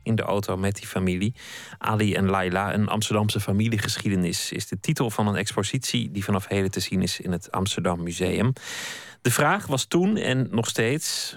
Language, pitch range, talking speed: Dutch, 100-120 Hz, 185 wpm